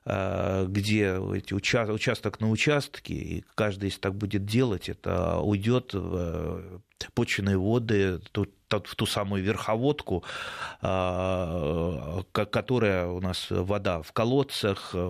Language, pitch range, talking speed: Russian, 95-115 Hz, 100 wpm